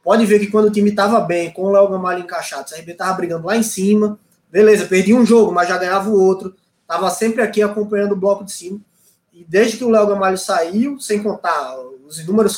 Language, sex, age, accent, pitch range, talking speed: Portuguese, male, 20-39, Brazilian, 180-220 Hz, 230 wpm